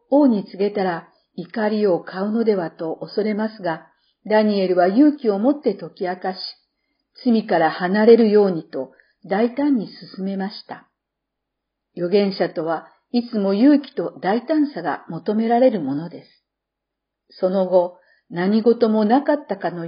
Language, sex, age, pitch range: Japanese, female, 50-69, 180-235 Hz